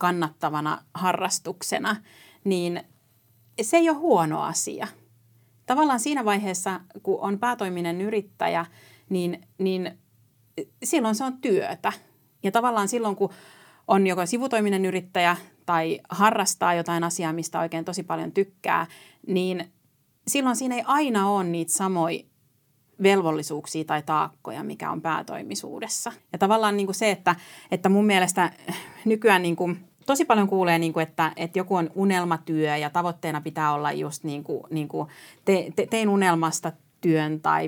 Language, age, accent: Finnish, 30-49, native